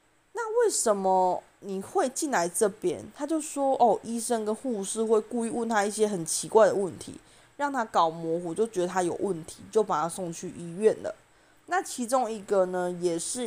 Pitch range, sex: 180-245 Hz, female